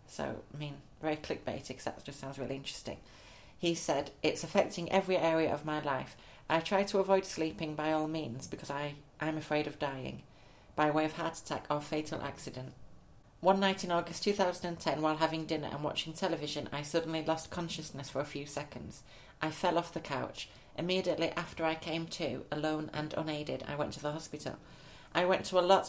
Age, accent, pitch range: 40-59, British, 140-165 Hz